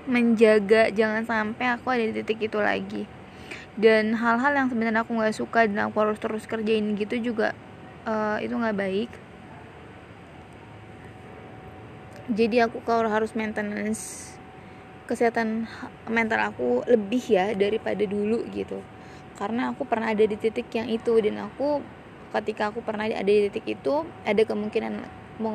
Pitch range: 210-235 Hz